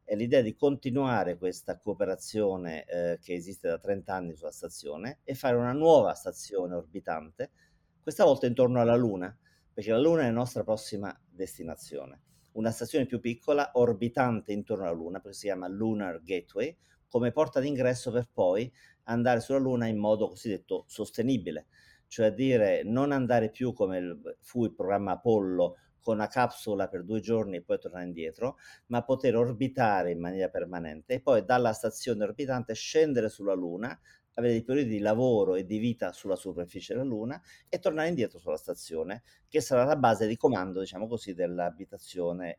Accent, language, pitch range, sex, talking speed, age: native, Italian, 95-125 Hz, male, 170 wpm, 50-69